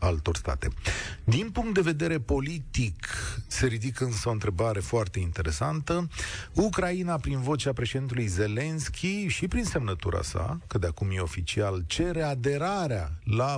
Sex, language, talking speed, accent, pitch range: male, Romanian, 135 wpm, native, 105-150 Hz